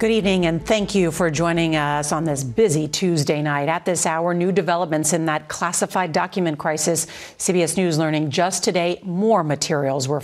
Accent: American